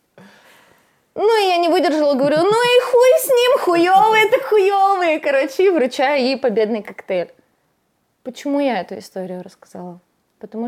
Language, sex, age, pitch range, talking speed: Russian, female, 20-39, 190-255 Hz, 140 wpm